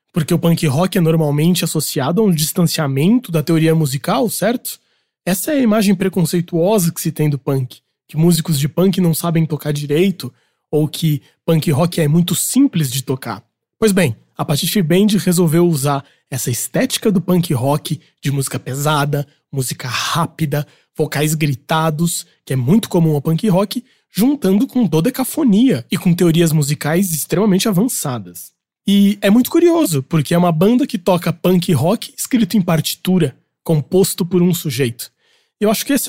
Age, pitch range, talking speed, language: 20-39, 150-200 Hz, 165 wpm, Portuguese